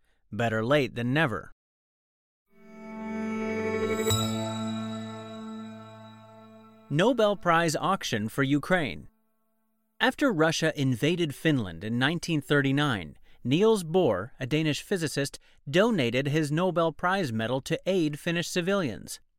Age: 30-49